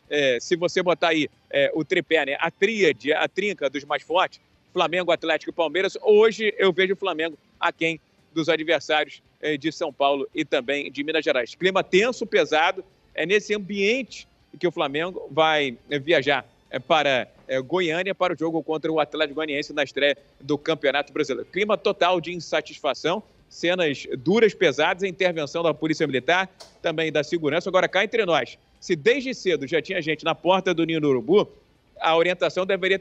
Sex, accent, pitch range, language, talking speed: male, Brazilian, 160-205 Hz, Portuguese, 180 wpm